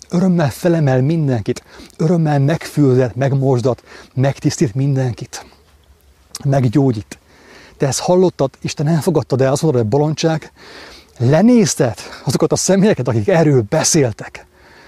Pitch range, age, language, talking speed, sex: 115-155 Hz, 30-49, English, 110 wpm, male